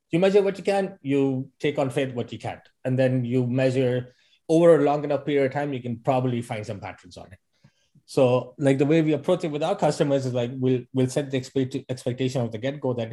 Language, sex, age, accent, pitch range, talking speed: English, male, 30-49, Indian, 115-145 Hz, 240 wpm